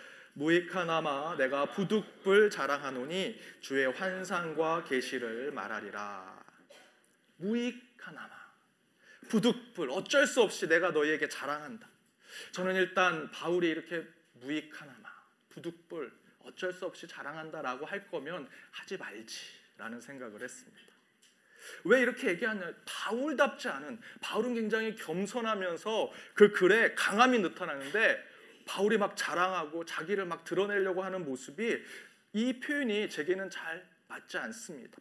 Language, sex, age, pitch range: Korean, male, 30-49, 160-225 Hz